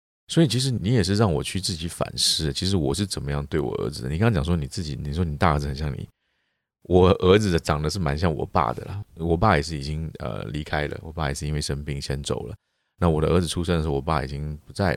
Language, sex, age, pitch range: Chinese, male, 30-49, 75-110 Hz